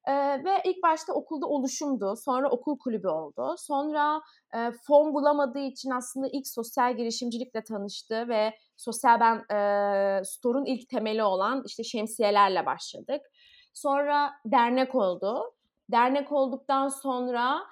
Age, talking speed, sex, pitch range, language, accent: 30-49, 125 wpm, female, 220-275 Hz, Turkish, native